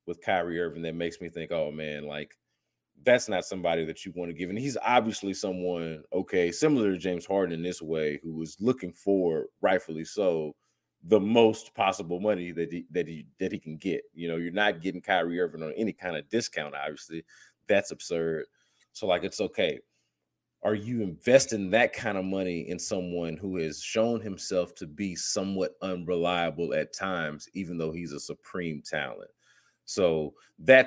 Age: 30-49